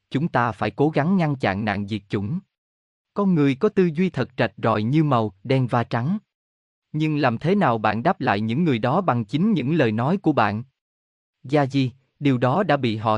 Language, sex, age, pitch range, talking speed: Vietnamese, male, 20-39, 110-160 Hz, 215 wpm